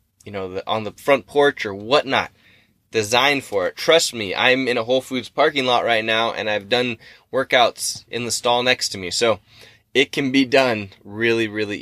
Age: 20-39